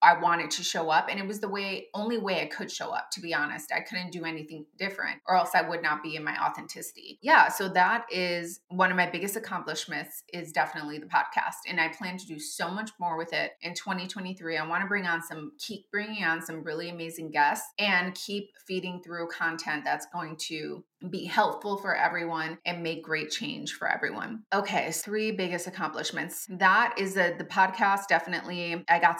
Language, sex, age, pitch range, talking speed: English, female, 20-39, 160-190 Hz, 205 wpm